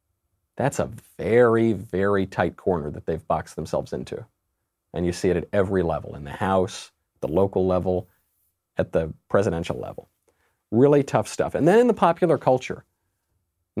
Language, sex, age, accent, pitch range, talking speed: English, male, 40-59, American, 90-130 Hz, 165 wpm